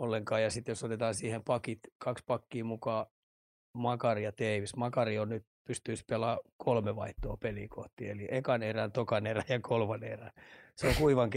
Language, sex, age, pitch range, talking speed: Finnish, male, 30-49, 110-125 Hz, 155 wpm